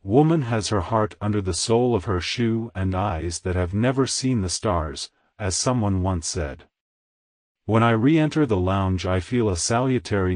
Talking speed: 180 wpm